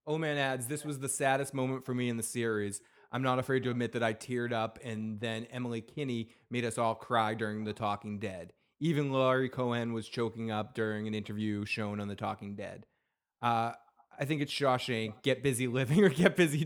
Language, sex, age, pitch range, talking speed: English, male, 20-39, 115-145 Hz, 215 wpm